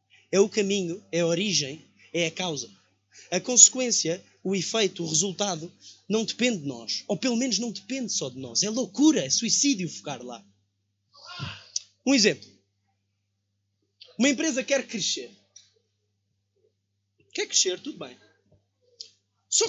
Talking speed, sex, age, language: 135 wpm, male, 20-39, Portuguese